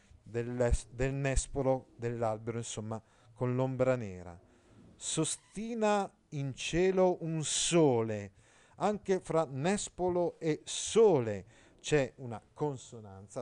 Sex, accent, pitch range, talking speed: male, native, 115-165 Hz, 90 wpm